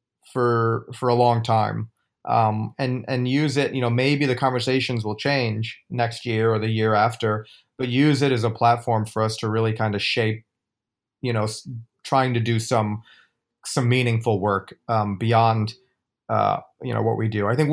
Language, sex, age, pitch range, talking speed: English, male, 30-49, 115-135 Hz, 185 wpm